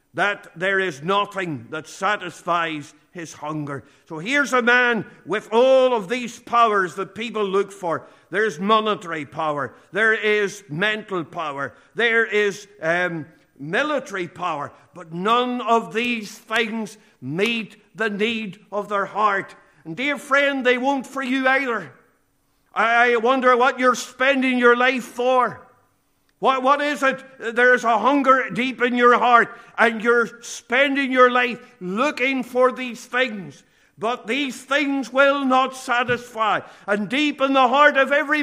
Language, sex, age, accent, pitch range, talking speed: English, male, 50-69, Irish, 195-255 Hz, 145 wpm